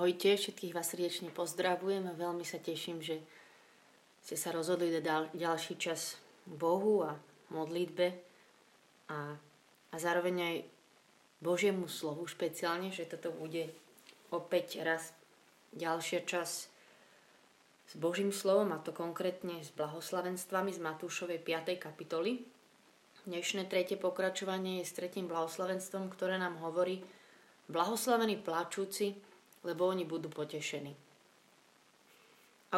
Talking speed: 115 wpm